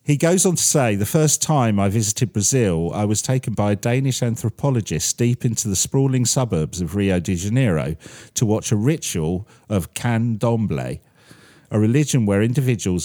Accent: British